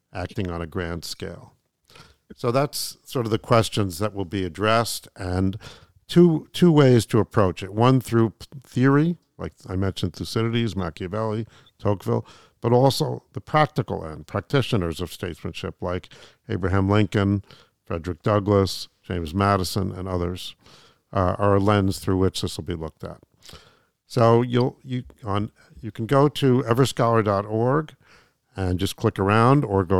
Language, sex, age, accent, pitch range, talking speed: English, male, 50-69, American, 95-115 Hz, 150 wpm